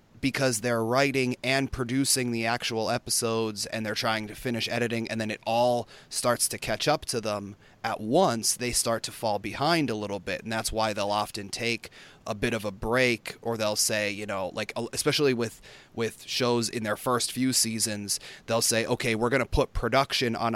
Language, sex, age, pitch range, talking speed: English, male, 30-49, 110-125 Hz, 200 wpm